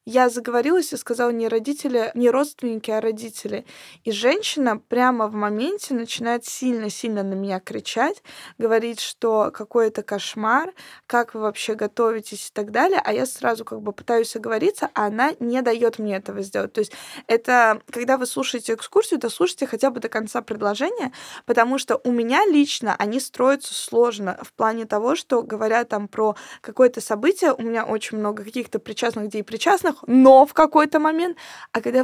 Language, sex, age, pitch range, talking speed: Russian, female, 20-39, 215-255 Hz, 170 wpm